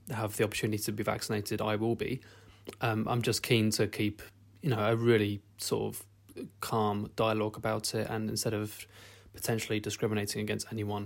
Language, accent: English, British